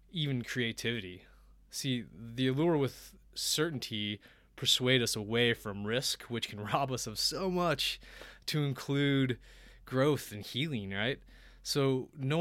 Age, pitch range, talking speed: 20-39, 100-125 Hz, 130 wpm